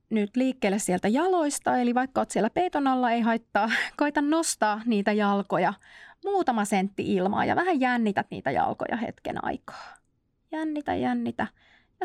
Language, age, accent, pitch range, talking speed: Finnish, 30-49, native, 200-275 Hz, 145 wpm